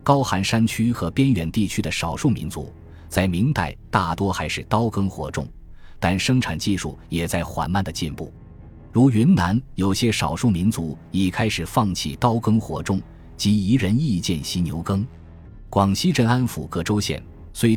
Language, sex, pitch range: Chinese, male, 85-115 Hz